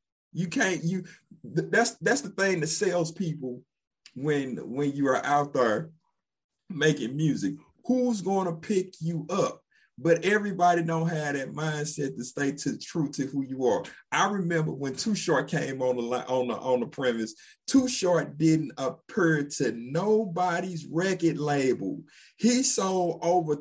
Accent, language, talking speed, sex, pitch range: American, English, 155 wpm, male, 155-215 Hz